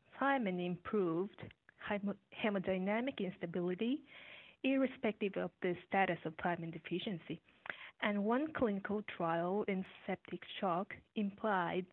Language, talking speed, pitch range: English, 95 wpm, 180-220 Hz